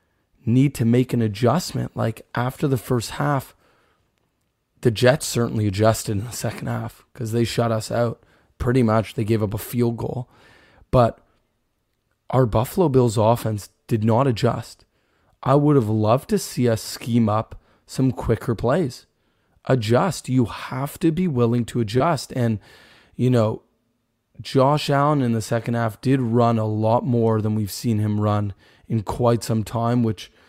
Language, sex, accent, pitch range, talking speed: English, male, American, 110-125 Hz, 165 wpm